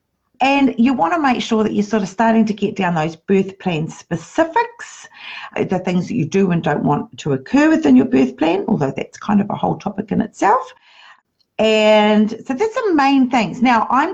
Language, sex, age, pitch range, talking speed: English, female, 50-69, 145-240 Hz, 210 wpm